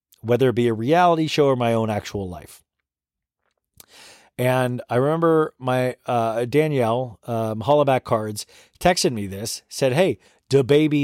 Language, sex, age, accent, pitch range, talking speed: English, male, 40-59, American, 110-155 Hz, 145 wpm